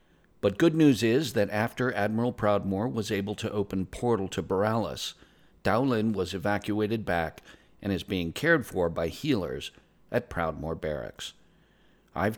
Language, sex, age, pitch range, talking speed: English, male, 50-69, 90-110 Hz, 145 wpm